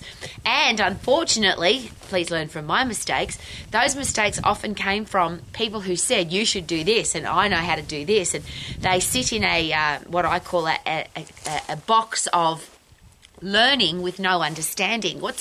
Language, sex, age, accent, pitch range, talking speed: English, female, 30-49, Australian, 170-220 Hz, 175 wpm